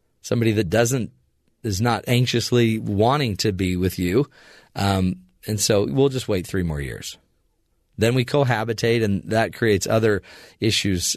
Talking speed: 155 wpm